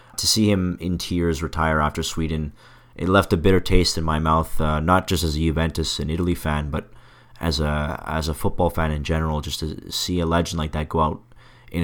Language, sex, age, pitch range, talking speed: English, male, 30-49, 80-90 Hz, 225 wpm